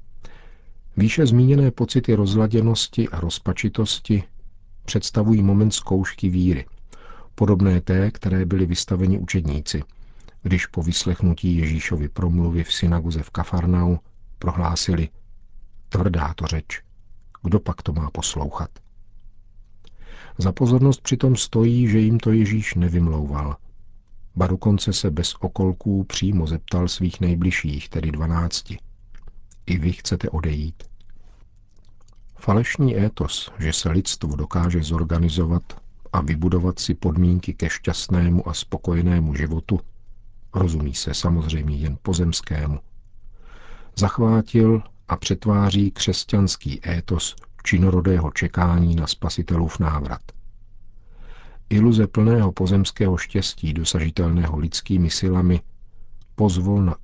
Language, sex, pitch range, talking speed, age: Czech, male, 85-100 Hz, 100 wpm, 50-69